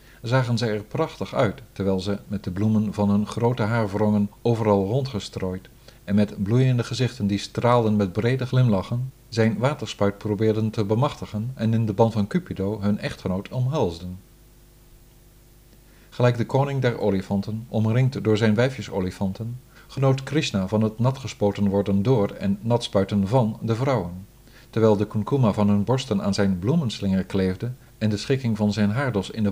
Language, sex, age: Dutch, male, 50-69